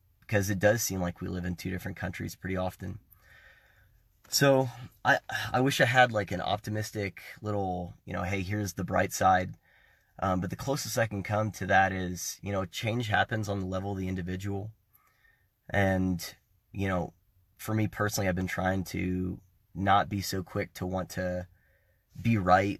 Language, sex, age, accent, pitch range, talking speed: English, male, 30-49, American, 90-105 Hz, 180 wpm